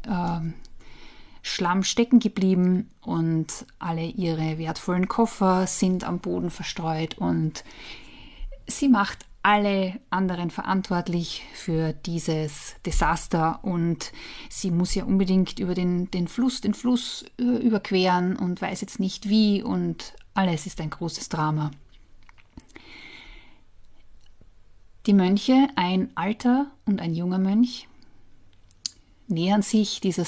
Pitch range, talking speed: 170-210 Hz, 110 wpm